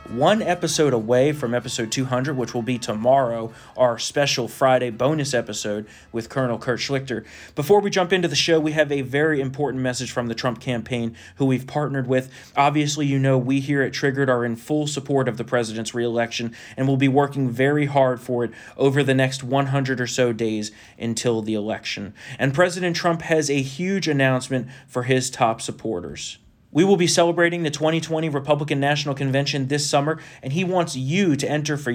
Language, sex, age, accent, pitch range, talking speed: English, male, 30-49, American, 125-155 Hz, 190 wpm